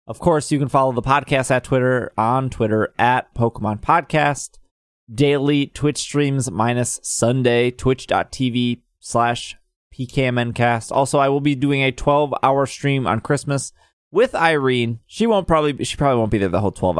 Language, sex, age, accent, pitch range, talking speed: English, male, 20-39, American, 110-145 Hz, 160 wpm